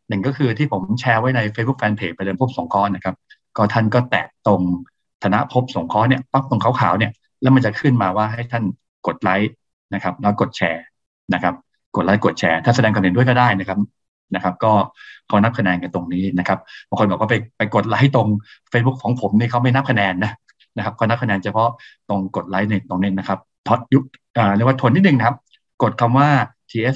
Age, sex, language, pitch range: 20-39, male, Thai, 95-120 Hz